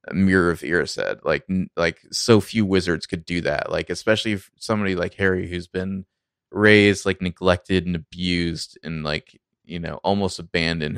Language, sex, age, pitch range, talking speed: English, male, 20-39, 85-100 Hz, 180 wpm